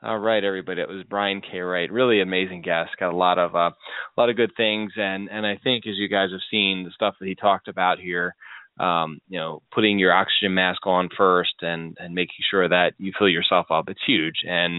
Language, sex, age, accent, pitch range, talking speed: English, male, 20-39, American, 90-105 Hz, 235 wpm